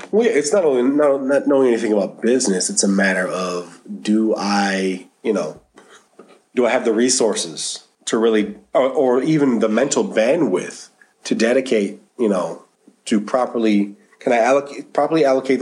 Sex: male